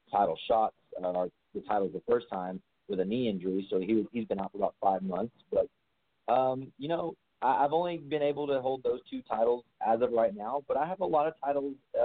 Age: 30-49